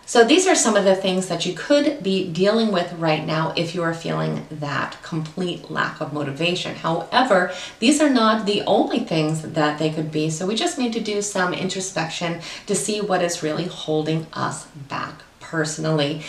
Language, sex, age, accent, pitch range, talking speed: English, female, 30-49, American, 155-205 Hz, 190 wpm